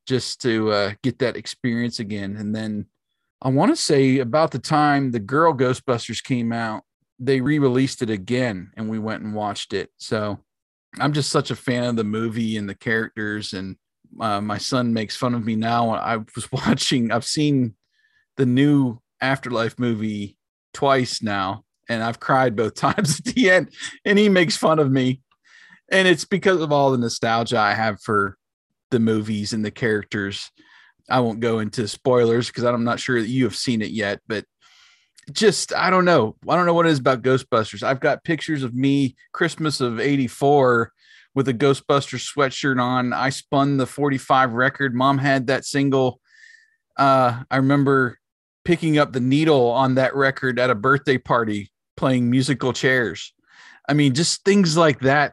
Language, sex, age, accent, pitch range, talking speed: English, male, 40-59, American, 115-140 Hz, 180 wpm